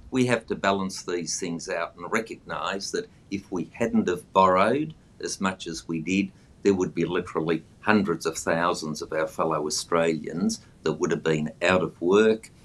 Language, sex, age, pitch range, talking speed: English, male, 50-69, 80-100 Hz, 180 wpm